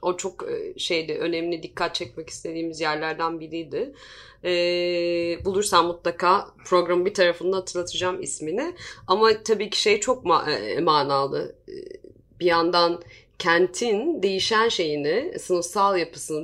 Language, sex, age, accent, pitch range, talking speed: Turkish, female, 30-49, native, 170-220 Hz, 105 wpm